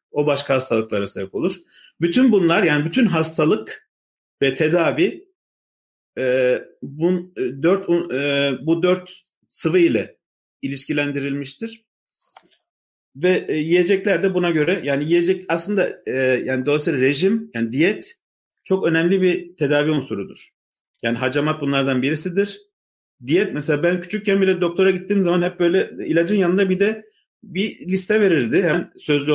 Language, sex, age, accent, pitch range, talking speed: Turkish, male, 40-59, native, 140-190 Hz, 135 wpm